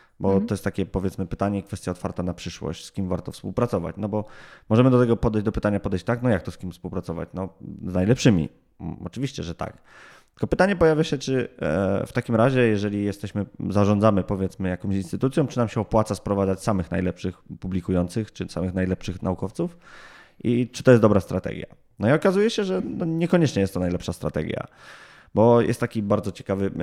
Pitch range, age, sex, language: 90-110 Hz, 20-39, male, Polish